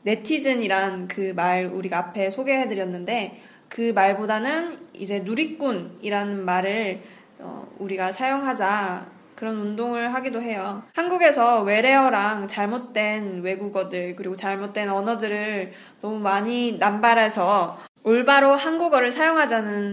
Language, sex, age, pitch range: Korean, female, 20-39, 195-250 Hz